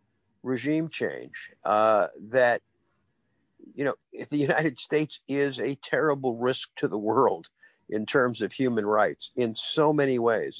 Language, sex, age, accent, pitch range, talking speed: English, male, 50-69, American, 110-145 Hz, 145 wpm